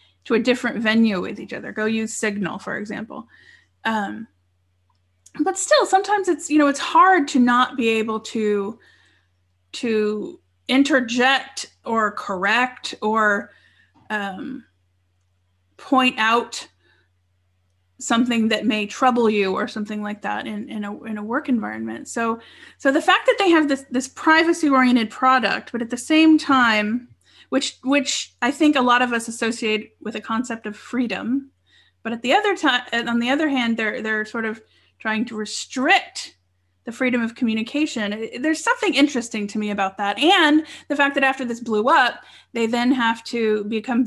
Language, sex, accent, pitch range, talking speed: English, female, American, 210-260 Hz, 165 wpm